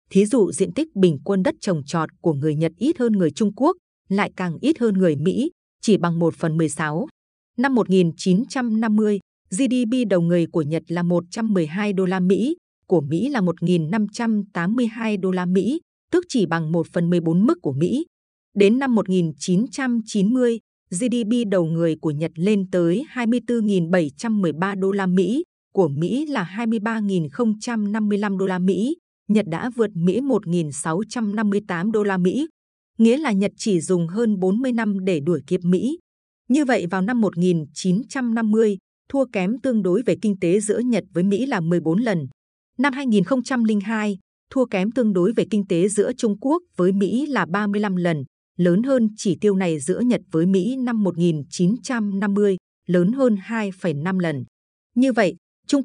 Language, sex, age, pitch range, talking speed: Vietnamese, female, 20-39, 180-235 Hz, 160 wpm